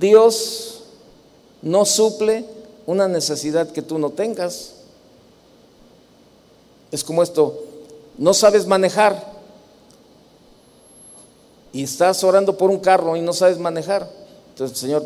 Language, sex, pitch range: Spanish, male, 160-205 Hz